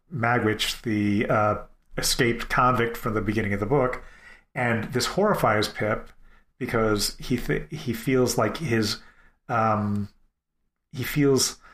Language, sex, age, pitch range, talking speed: English, male, 30-49, 110-130 Hz, 130 wpm